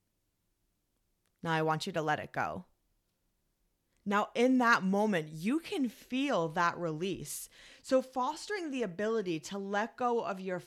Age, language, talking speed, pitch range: 30-49, English, 145 wpm, 175-235 Hz